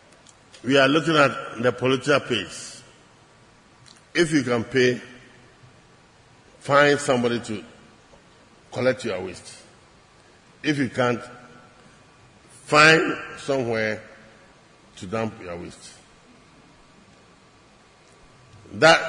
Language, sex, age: English, male, 50-69